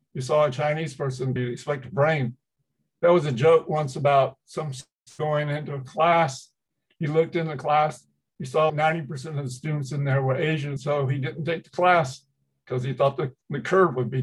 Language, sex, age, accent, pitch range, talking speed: English, male, 50-69, American, 130-155 Hz, 205 wpm